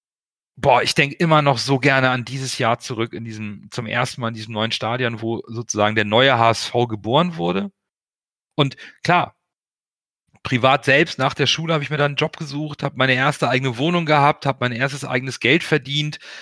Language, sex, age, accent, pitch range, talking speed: German, male, 40-59, German, 120-145 Hz, 195 wpm